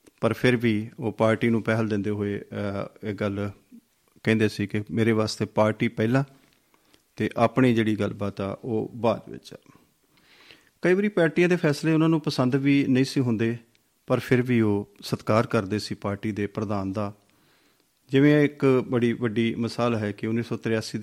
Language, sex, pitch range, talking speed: Punjabi, male, 105-125 Hz, 165 wpm